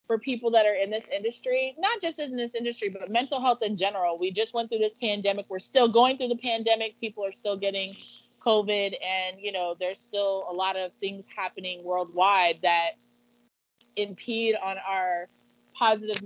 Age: 20-39